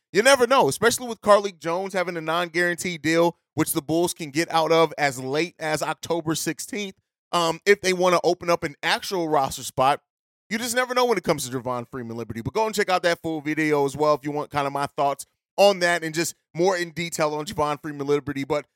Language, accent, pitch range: English, American, 155-200 Hz